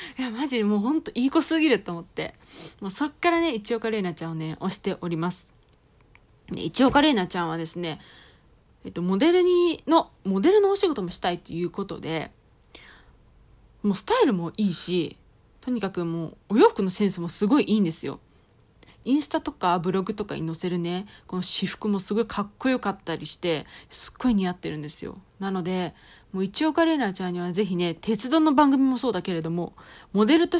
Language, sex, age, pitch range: Japanese, female, 20-39, 175-280 Hz